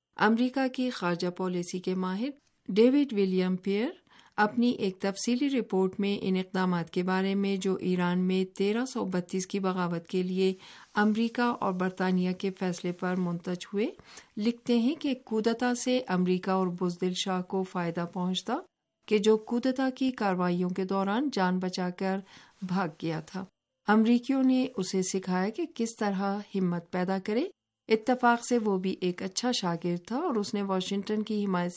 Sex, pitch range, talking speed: female, 185-215 Hz, 160 wpm